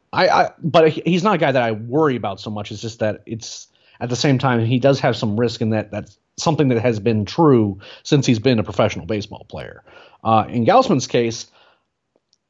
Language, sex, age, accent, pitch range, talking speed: English, male, 30-49, American, 105-135 Hz, 220 wpm